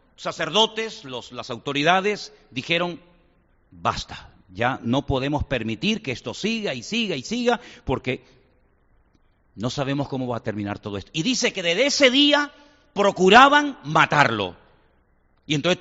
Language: Spanish